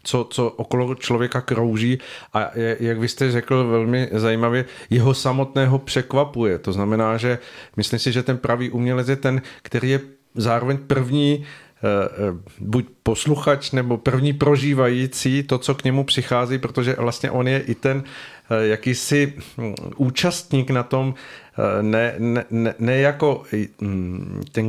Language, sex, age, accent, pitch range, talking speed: Czech, male, 40-59, native, 110-130 Hz, 130 wpm